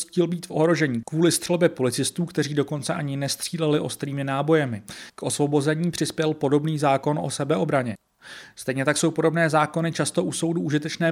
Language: Czech